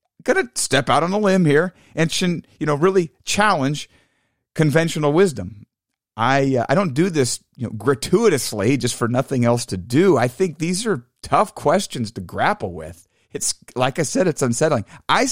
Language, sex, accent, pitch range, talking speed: English, male, American, 120-165 Hz, 180 wpm